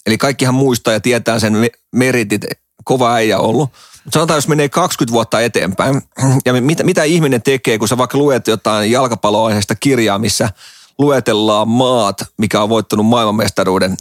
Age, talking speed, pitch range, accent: 30-49, 155 wpm, 105-130 Hz, native